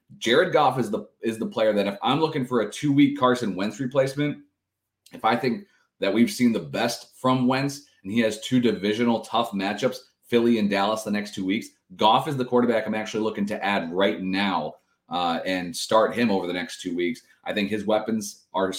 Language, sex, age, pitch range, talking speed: English, male, 30-49, 105-125 Hz, 210 wpm